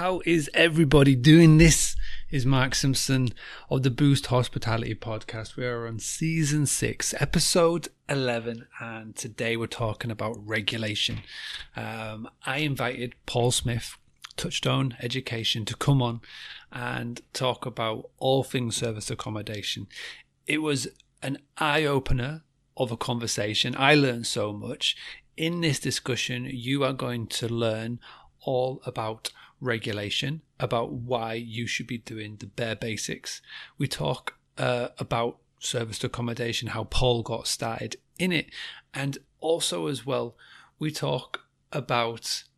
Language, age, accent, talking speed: English, 30-49, British, 130 wpm